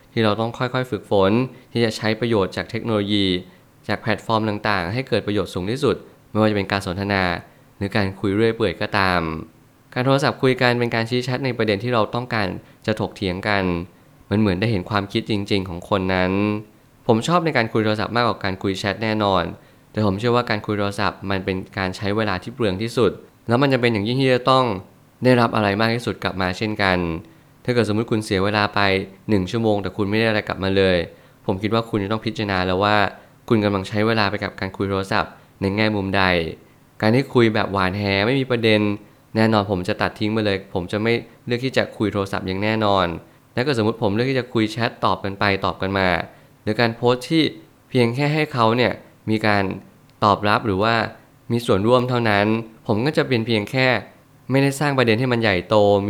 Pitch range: 100-120 Hz